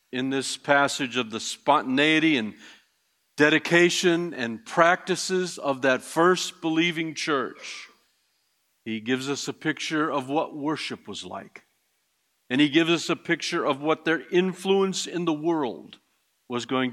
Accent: American